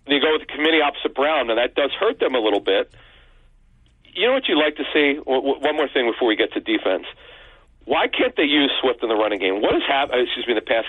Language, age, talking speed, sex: English, 40-59, 260 wpm, male